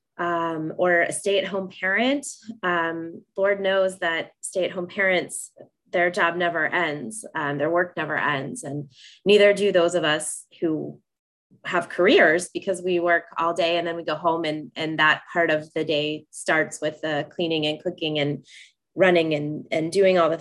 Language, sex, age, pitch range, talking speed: English, female, 20-39, 160-195 Hz, 175 wpm